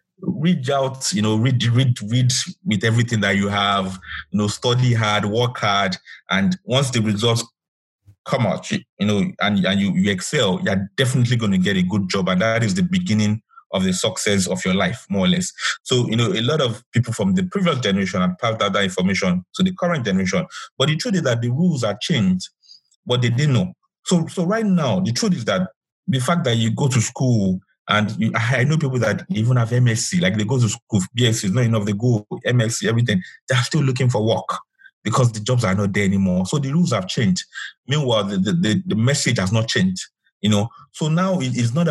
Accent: Nigerian